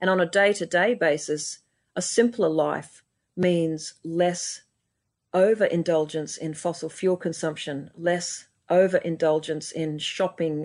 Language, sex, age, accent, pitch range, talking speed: English, female, 40-59, Australian, 155-185 Hz, 105 wpm